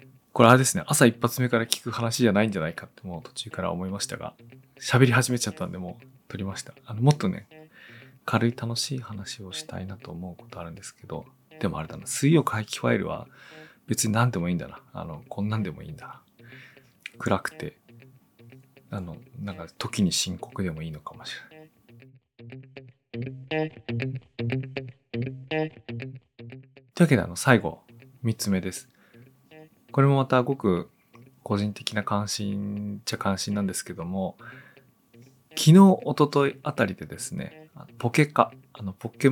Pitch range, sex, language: 105-130 Hz, male, Japanese